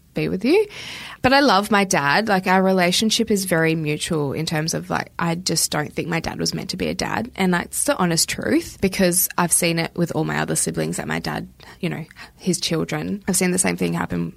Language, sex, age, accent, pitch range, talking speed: English, female, 20-39, Australian, 150-185 Hz, 240 wpm